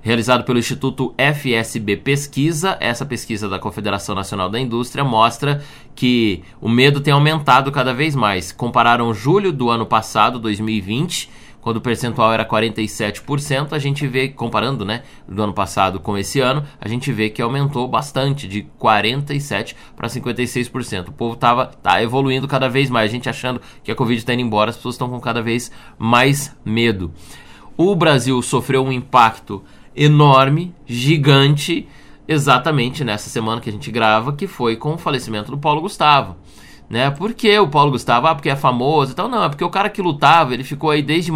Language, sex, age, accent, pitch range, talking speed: Portuguese, male, 20-39, Brazilian, 115-140 Hz, 175 wpm